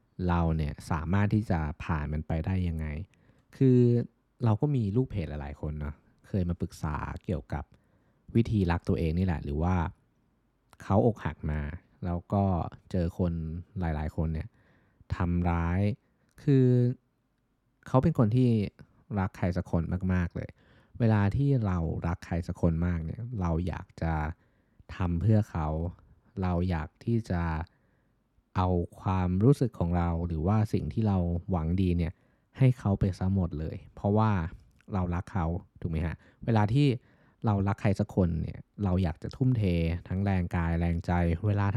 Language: Thai